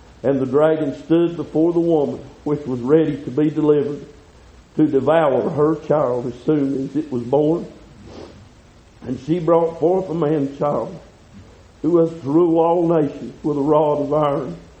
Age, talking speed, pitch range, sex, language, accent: 50-69, 165 wpm, 145-170 Hz, male, English, American